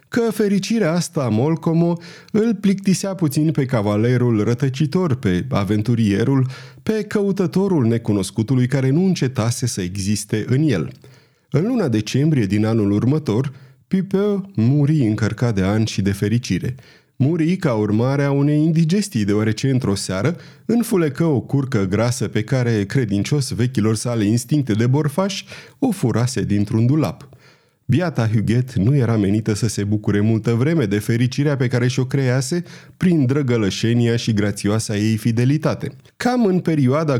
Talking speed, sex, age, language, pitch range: 140 wpm, male, 30-49, Romanian, 110-155 Hz